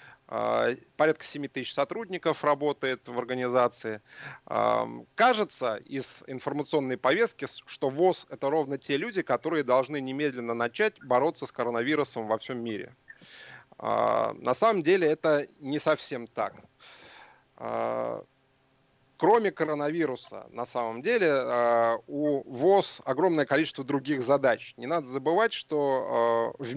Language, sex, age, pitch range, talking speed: Russian, male, 30-49, 120-150 Hz, 110 wpm